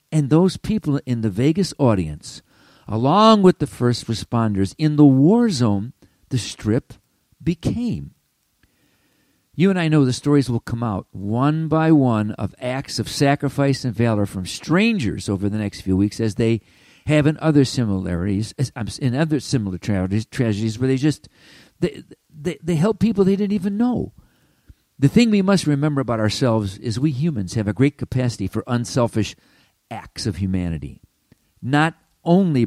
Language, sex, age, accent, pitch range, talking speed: English, male, 50-69, American, 110-160 Hz, 160 wpm